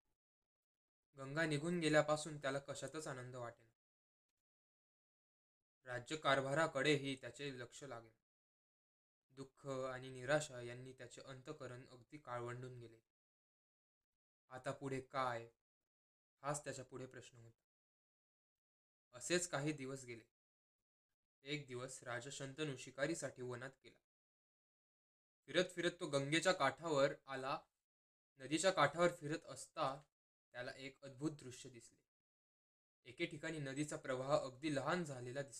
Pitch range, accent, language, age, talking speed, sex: 125-155 Hz, native, Marathi, 20-39, 85 wpm, male